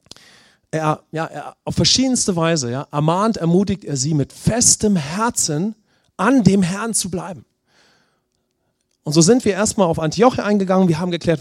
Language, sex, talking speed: English, male, 160 wpm